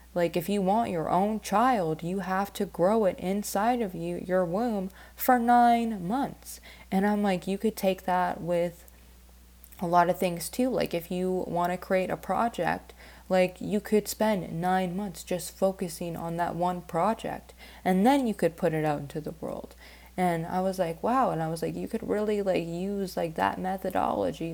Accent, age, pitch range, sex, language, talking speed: American, 20-39, 160-190 Hz, female, English, 195 wpm